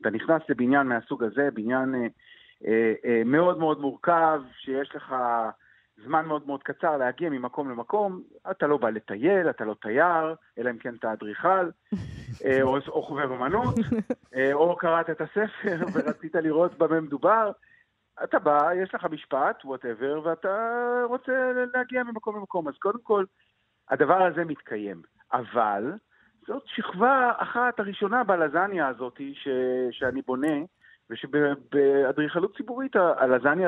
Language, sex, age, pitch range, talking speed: Hebrew, male, 50-69, 130-185 Hz, 135 wpm